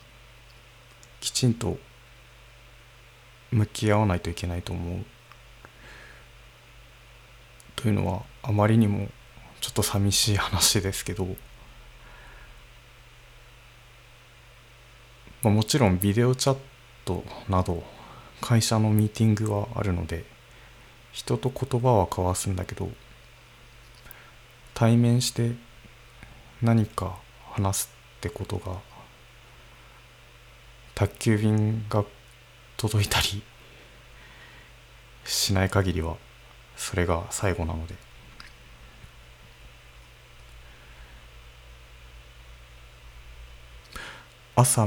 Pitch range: 95-120 Hz